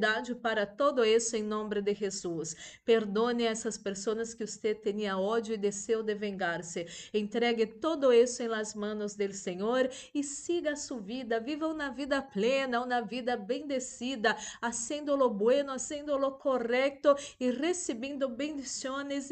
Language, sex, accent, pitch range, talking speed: Spanish, female, Brazilian, 205-250 Hz, 140 wpm